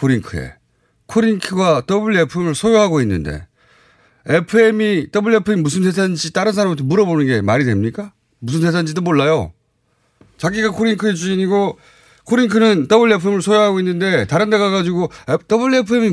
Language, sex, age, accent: Korean, male, 30-49, native